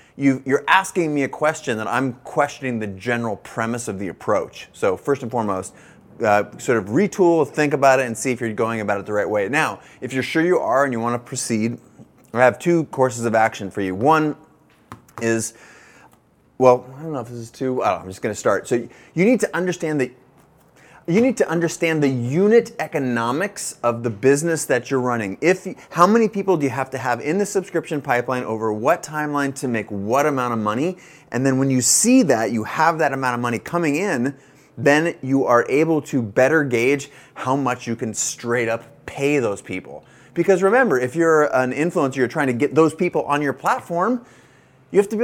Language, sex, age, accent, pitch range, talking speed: English, male, 30-49, American, 120-160 Hz, 215 wpm